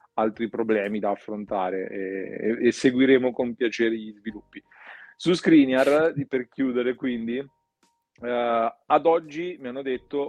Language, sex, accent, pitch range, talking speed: Italian, male, native, 110-130 Hz, 130 wpm